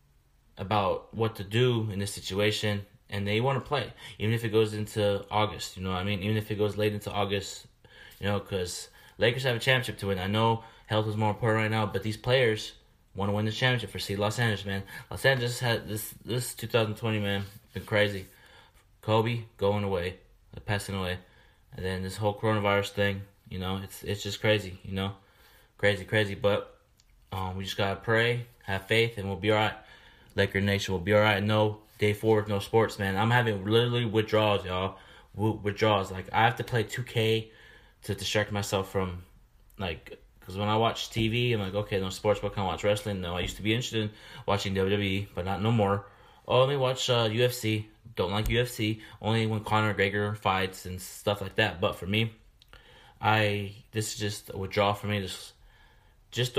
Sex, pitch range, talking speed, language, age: male, 100-110 Hz, 200 wpm, English, 20-39